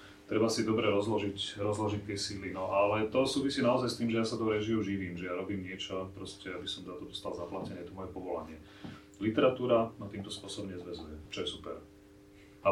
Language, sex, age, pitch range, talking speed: Slovak, male, 30-49, 95-105 Hz, 205 wpm